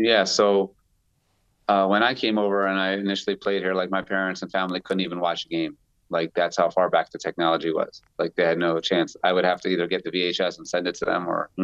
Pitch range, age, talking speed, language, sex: 85-95 Hz, 30-49, 260 wpm, English, male